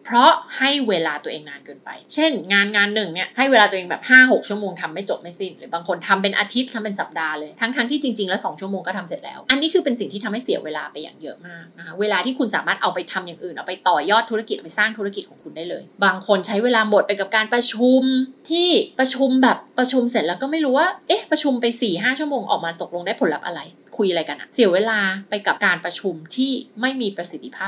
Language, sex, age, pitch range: Thai, female, 20-39, 185-255 Hz